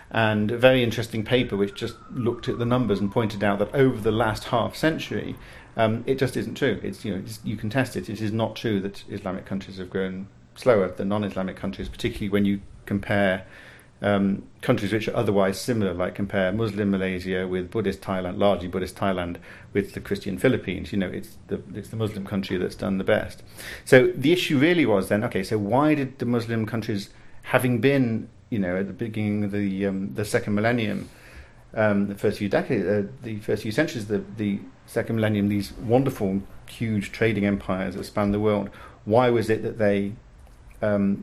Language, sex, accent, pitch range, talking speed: English, male, British, 100-115 Hz, 200 wpm